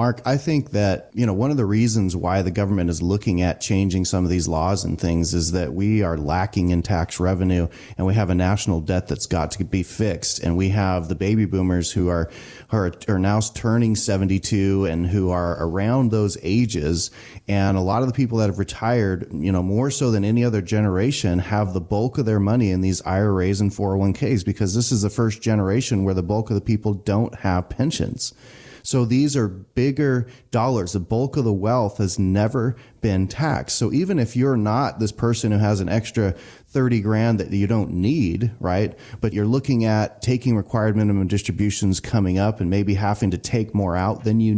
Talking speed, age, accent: 210 wpm, 30-49, American